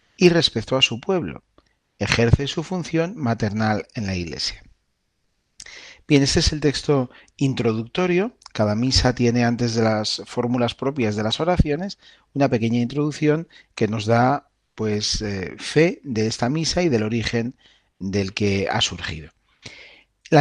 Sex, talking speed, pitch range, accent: male, 140 wpm, 115-170 Hz, Spanish